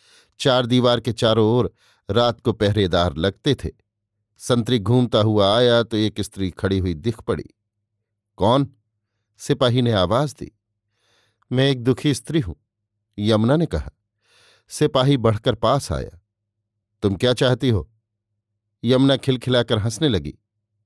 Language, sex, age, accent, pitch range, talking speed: Hindi, male, 50-69, native, 105-135 Hz, 130 wpm